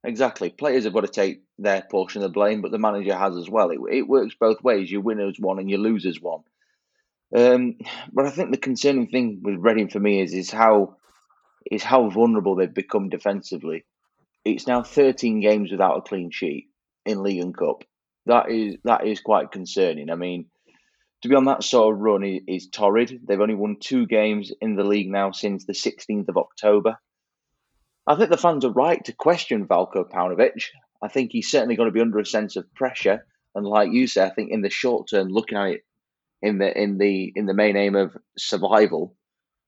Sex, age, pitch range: male, 30-49, 100-120 Hz